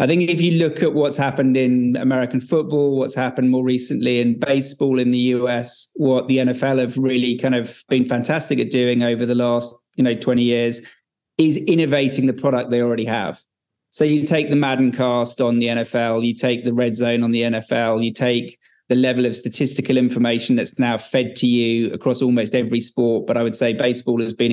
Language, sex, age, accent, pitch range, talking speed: English, male, 20-39, British, 120-130 Hz, 210 wpm